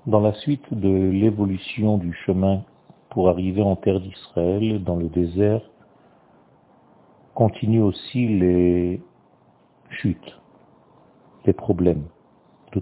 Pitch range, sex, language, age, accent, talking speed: 90-115 Hz, male, French, 50-69, French, 105 wpm